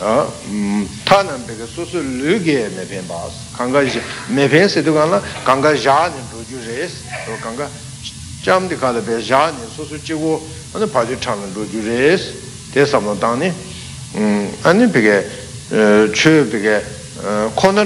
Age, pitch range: 60-79, 105-145 Hz